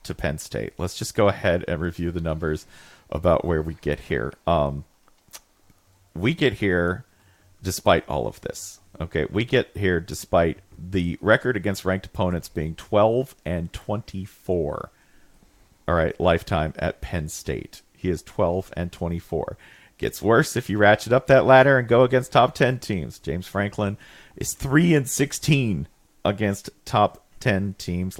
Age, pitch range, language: 40-59, 80-105 Hz, English